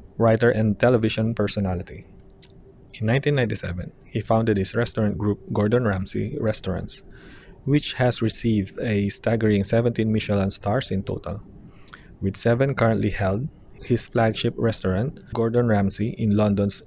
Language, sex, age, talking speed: English, male, 20-39, 125 wpm